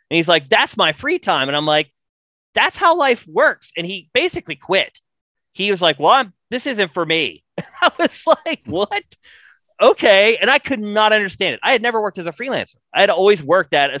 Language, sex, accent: English, male, American